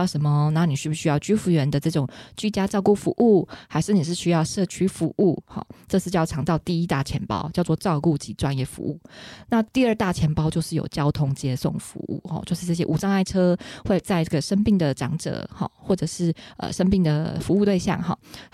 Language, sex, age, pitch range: Chinese, female, 20-39, 150-185 Hz